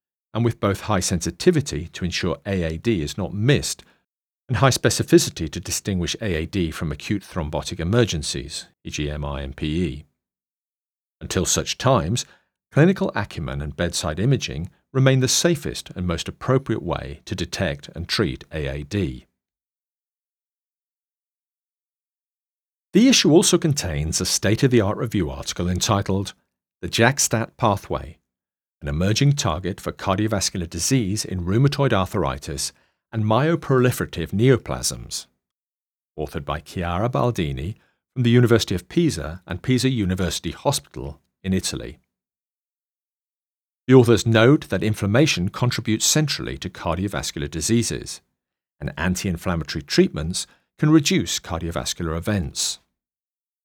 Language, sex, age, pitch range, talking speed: English, male, 50-69, 80-125 Hz, 110 wpm